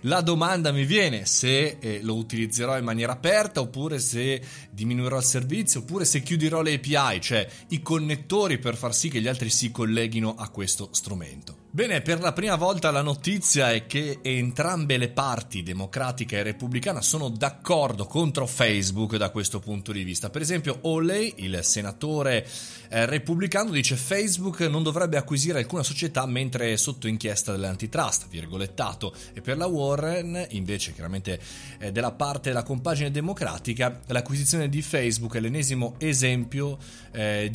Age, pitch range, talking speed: 30-49, 110-150 Hz, 155 wpm